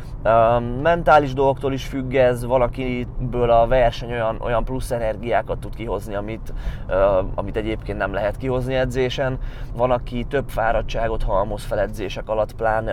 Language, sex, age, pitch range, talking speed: Hungarian, male, 20-39, 100-130 Hz, 135 wpm